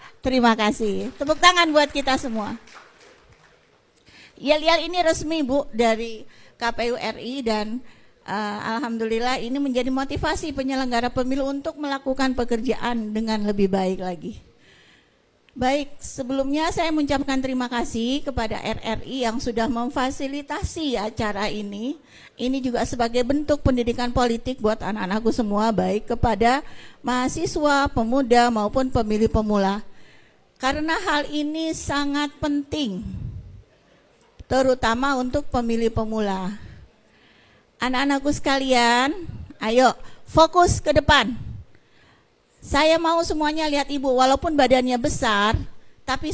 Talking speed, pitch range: 105 wpm, 225-280 Hz